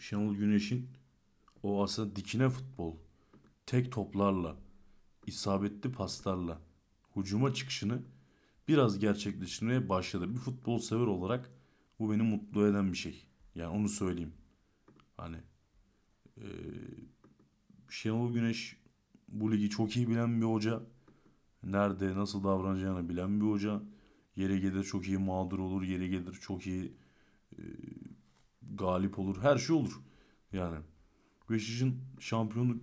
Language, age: Turkish, 50-69